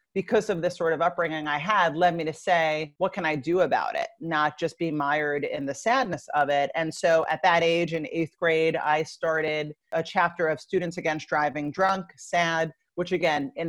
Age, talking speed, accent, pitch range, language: 40-59, 210 wpm, American, 160-215 Hz, English